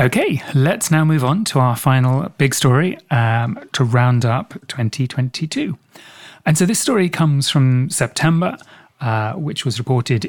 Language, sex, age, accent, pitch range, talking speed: English, male, 30-49, British, 115-145 Hz, 150 wpm